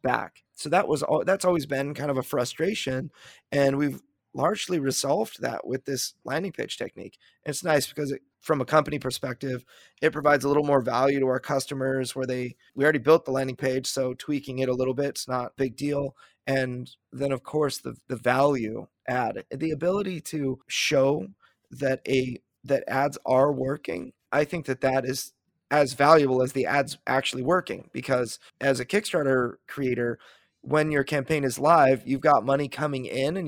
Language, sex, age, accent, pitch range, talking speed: English, male, 30-49, American, 130-150 Hz, 185 wpm